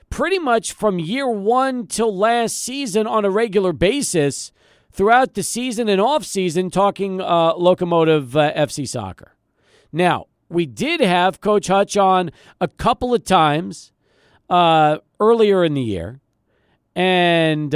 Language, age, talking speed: English, 40-59, 140 wpm